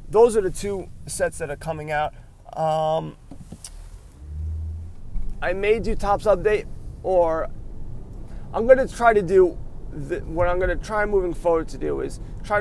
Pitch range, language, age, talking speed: 110-175 Hz, English, 30-49, 150 wpm